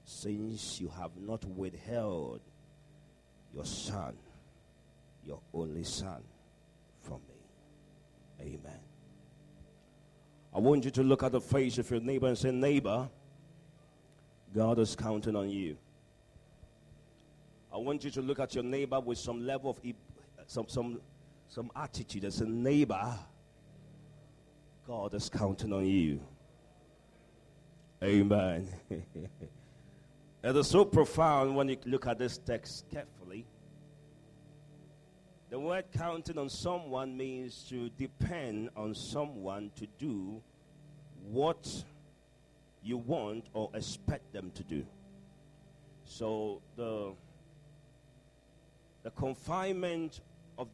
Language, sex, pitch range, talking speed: English, male, 110-150 Hz, 110 wpm